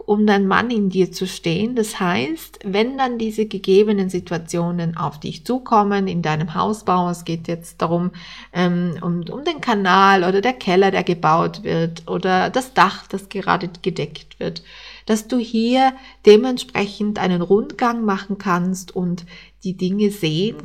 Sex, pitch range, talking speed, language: female, 185-225 Hz, 155 wpm, German